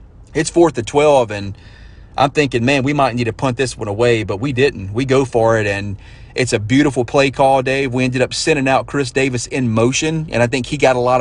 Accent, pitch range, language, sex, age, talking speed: American, 115-135 Hz, English, male, 30-49, 245 wpm